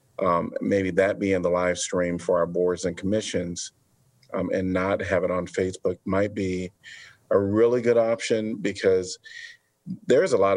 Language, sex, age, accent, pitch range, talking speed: English, male, 40-59, American, 95-130 Hz, 165 wpm